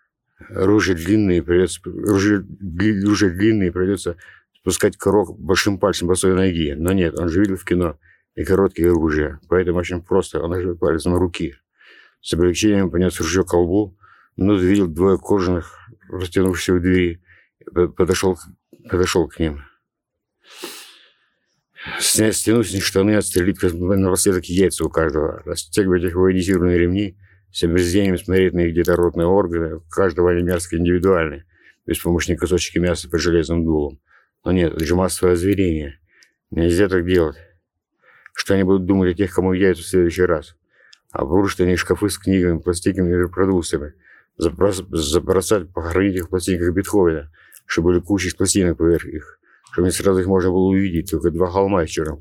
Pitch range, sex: 85-95 Hz, male